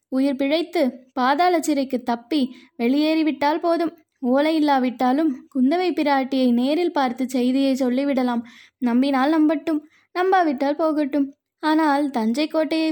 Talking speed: 100 wpm